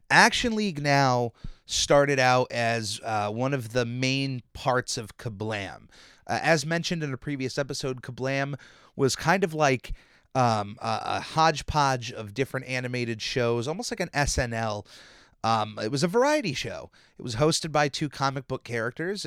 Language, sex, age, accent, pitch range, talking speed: English, male, 30-49, American, 115-150 Hz, 160 wpm